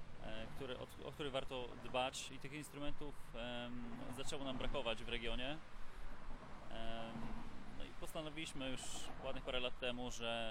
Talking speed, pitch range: 110 wpm, 105-125 Hz